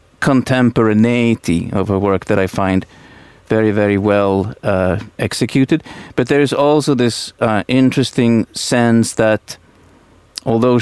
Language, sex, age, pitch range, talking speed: Finnish, male, 40-59, 100-120 Hz, 120 wpm